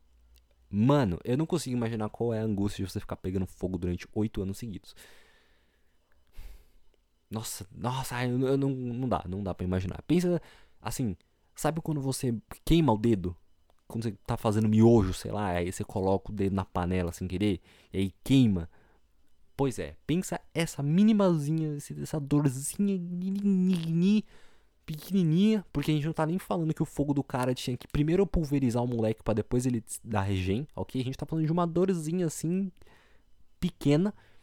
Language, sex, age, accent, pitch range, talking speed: Portuguese, male, 20-39, Brazilian, 90-140 Hz, 175 wpm